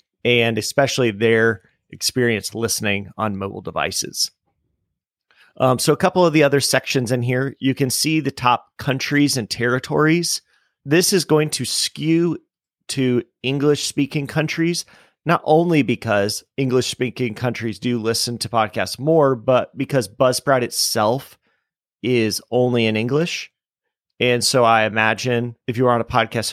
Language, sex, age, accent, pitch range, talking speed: English, male, 30-49, American, 110-135 Hz, 140 wpm